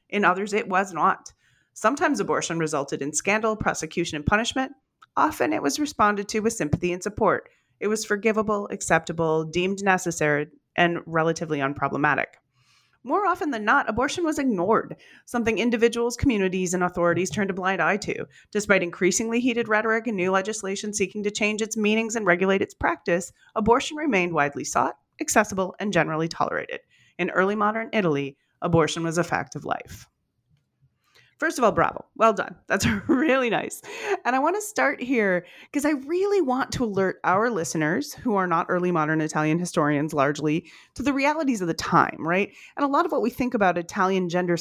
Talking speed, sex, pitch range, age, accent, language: 175 wpm, female, 175-245 Hz, 30-49, American, English